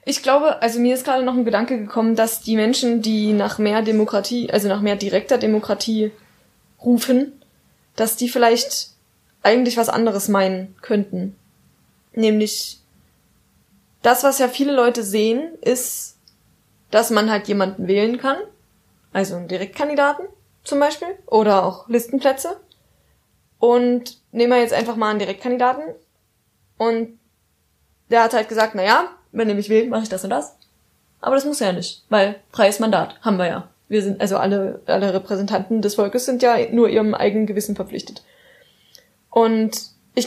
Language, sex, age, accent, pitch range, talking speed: German, female, 20-39, German, 205-245 Hz, 160 wpm